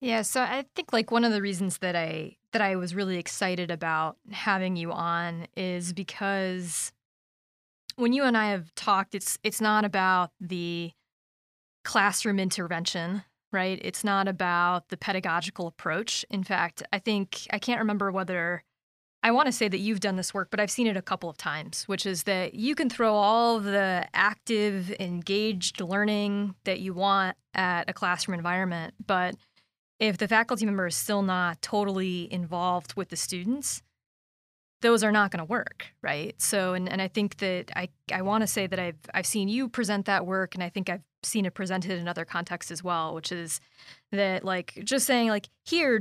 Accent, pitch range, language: American, 180-220 Hz, English